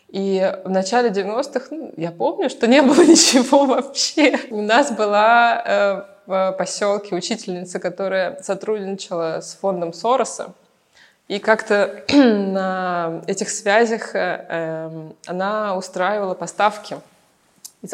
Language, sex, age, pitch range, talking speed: Russian, female, 20-39, 195-265 Hz, 105 wpm